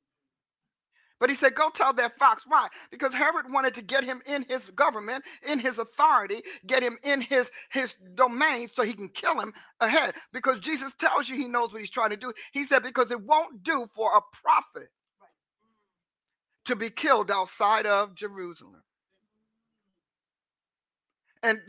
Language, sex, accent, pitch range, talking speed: English, male, American, 220-295 Hz, 165 wpm